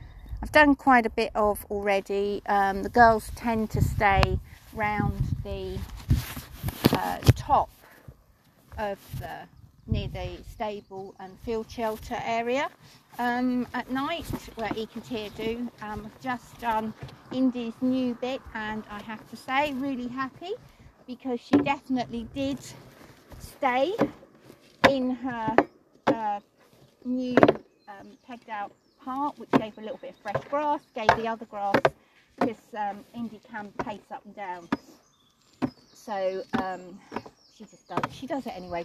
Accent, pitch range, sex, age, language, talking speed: British, 210-265 Hz, female, 50-69, English, 135 wpm